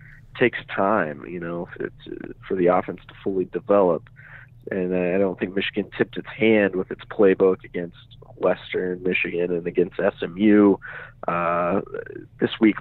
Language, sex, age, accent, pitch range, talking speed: English, male, 40-59, American, 95-125 Hz, 145 wpm